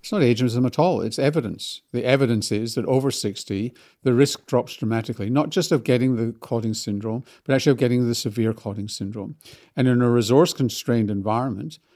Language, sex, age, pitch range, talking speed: English, male, 50-69, 120-145 Hz, 185 wpm